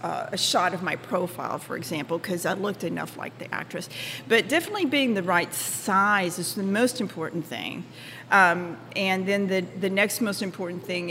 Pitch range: 175-215 Hz